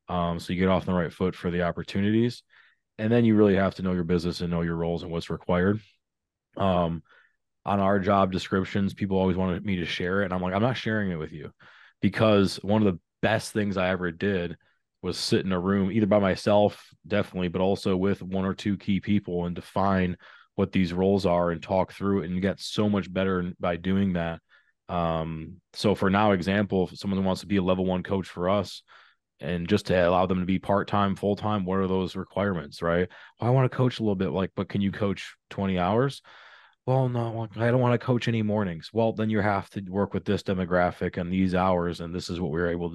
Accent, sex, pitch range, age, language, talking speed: American, male, 90-100 Hz, 20-39, English, 230 wpm